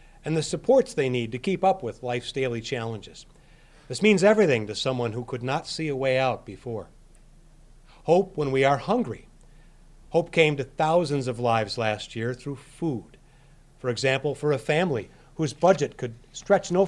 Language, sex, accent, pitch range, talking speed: English, male, American, 130-165 Hz, 180 wpm